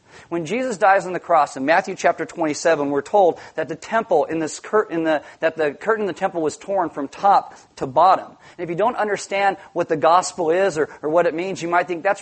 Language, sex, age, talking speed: English, male, 40-59, 240 wpm